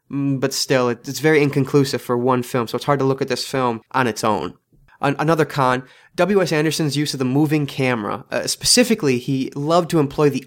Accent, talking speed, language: American, 200 wpm, English